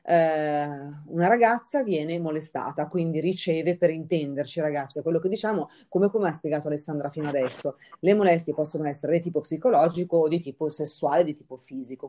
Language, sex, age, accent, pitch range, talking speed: Italian, female, 30-49, native, 150-180 Hz, 160 wpm